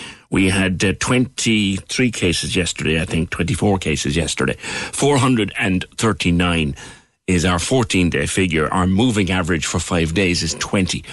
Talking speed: 130 wpm